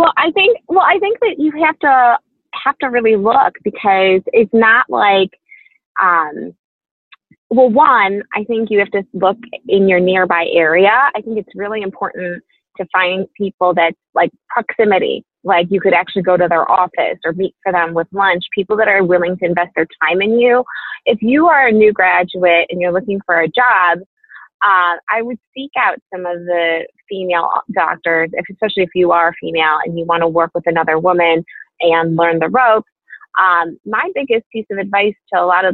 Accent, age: American, 20-39